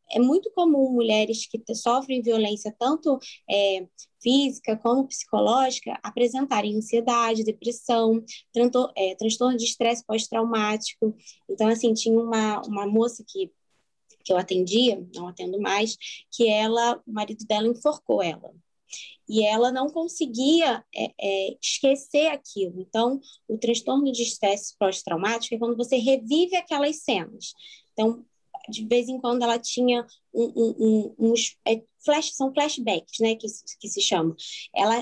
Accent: Brazilian